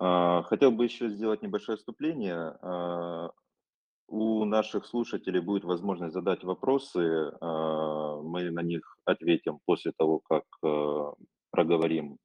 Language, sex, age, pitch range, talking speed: Russian, male, 30-49, 80-100 Hz, 105 wpm